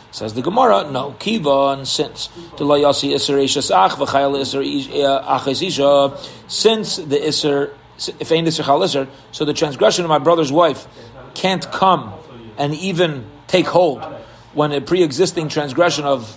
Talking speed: 115 wpm